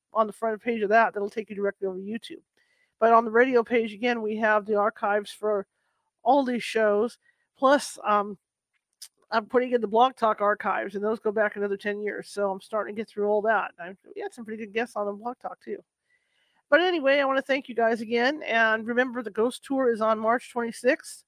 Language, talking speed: English, 225 wpm